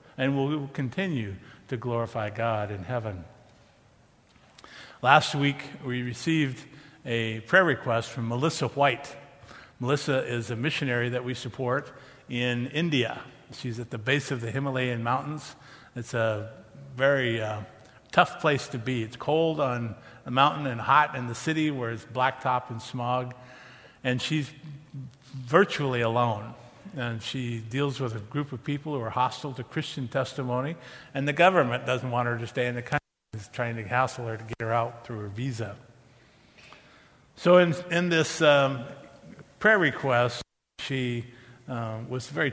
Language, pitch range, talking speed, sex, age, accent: English, 120-145 Hz, 155 wpm, male, 50-69, American